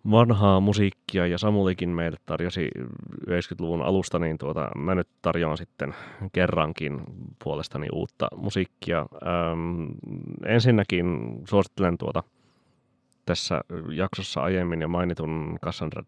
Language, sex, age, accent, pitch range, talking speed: Finnish, male, 30-49, native, 80-100 Hz, 95 wpm